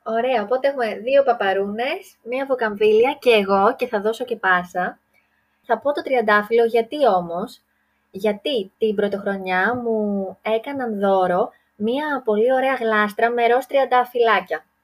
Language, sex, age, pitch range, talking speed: Greek, female, 20-39, 205-260 Hz, 130 wpm